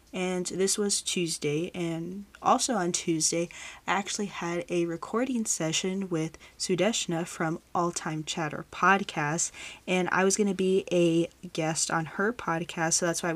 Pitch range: 165-190 Hz